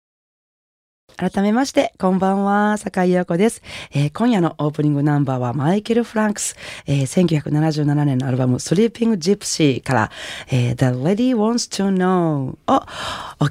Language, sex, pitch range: Japanese, female, 140-185 Hz